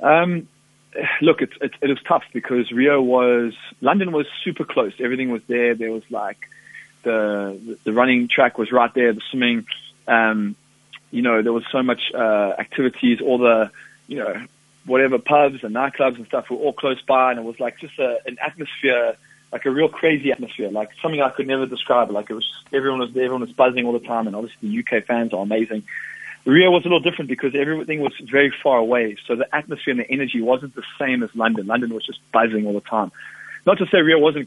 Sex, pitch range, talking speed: male, 115-140 Hz, 220 wpm